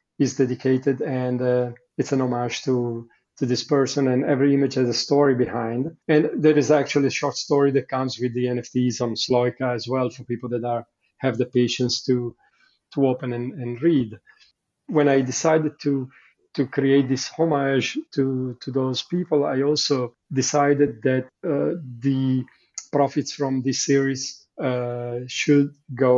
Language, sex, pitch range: English, male, 125-140 Hz